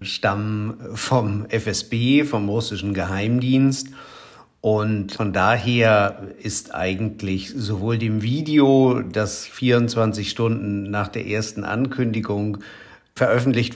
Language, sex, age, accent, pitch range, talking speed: German, male, 50-69, German, 100-125 Hz, 95 wpm